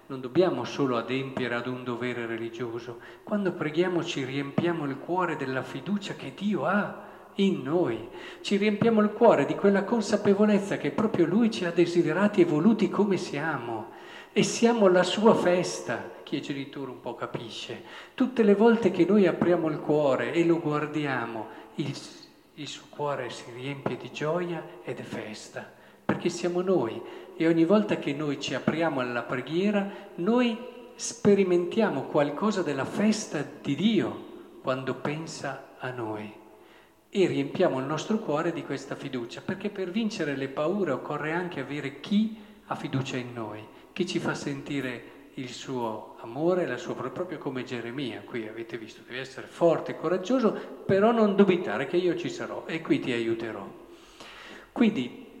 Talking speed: 160 wpm